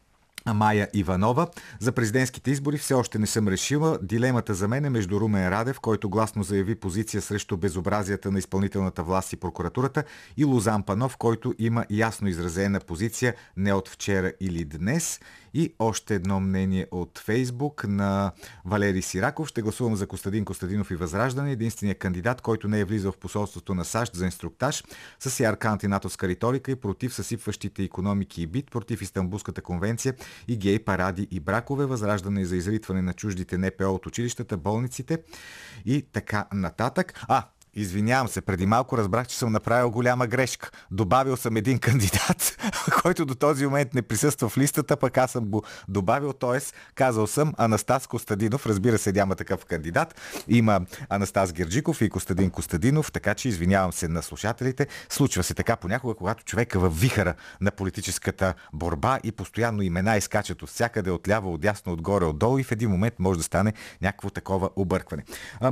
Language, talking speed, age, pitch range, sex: Bulgarian, 165 wpm, 50-69, 95-125 Hz, male